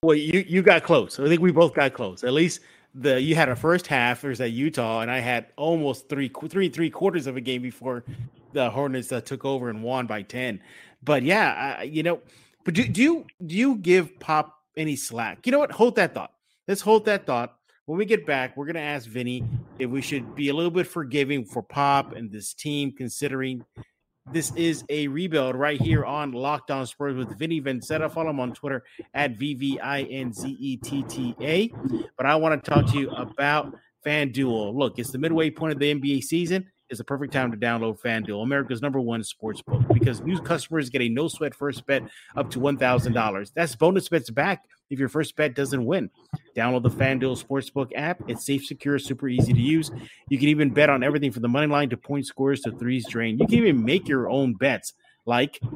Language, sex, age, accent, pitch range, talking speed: English, male, 30-49, American, 125-155 Hz, 210 wpm